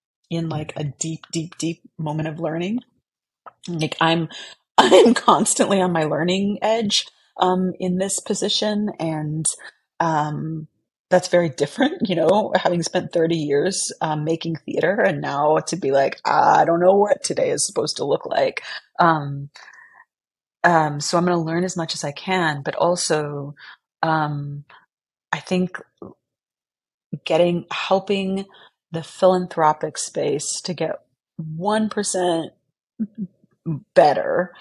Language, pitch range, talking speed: English, 155-185 Hz, 135 wpm